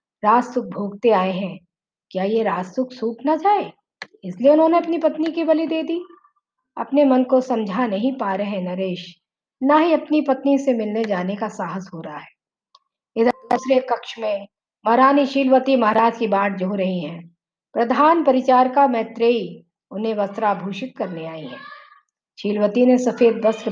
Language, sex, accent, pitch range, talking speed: Hindi, female, native, 200-275 Hz, 95 wpm